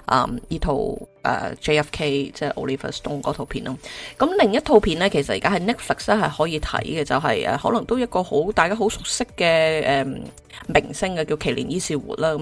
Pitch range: 150-200 Hz